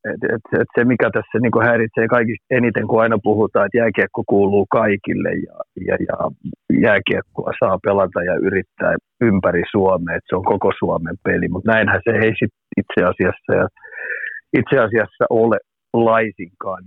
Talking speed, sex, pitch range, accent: 155 wpm, male, 100-115 Hz, native